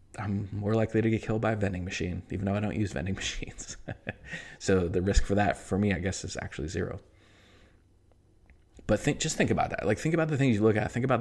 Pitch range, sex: 90-105 Hz, male